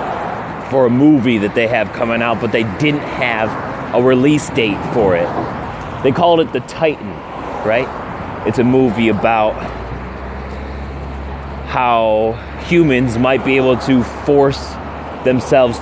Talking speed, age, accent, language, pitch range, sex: 135 wpm, 30-49, American, English, 100-125 Hz, male